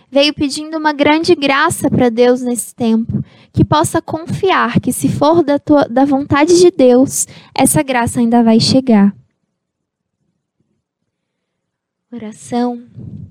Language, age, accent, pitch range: Portuguese, 10-29, Brazilian, 240-290 Hz